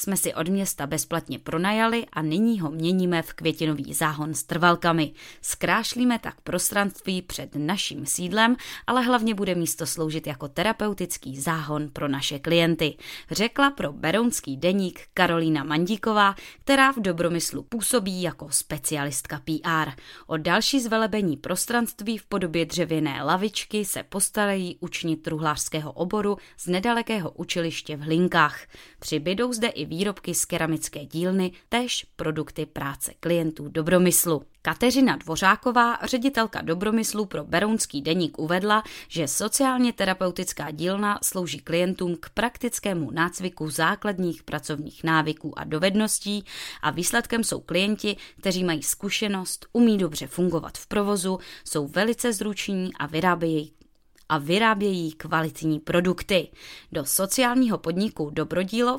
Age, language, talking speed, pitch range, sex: 20-39, Czech, 125 wpm, 155-205 Hz, female